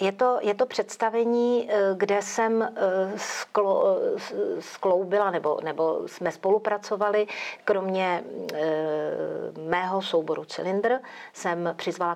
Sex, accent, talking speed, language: female, native, 90 wpm, Czech